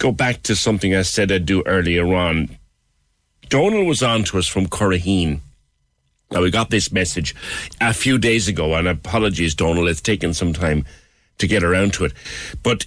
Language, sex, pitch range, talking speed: English, male, 80-110 Hz, 180 wpm